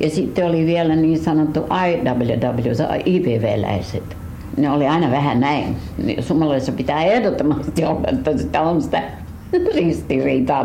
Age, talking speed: 70-89, 120 wpm